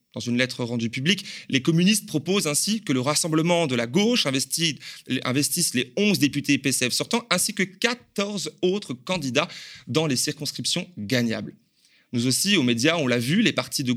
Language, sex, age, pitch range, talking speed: French, male, 30-49, 120-165 Hz, 170 wpm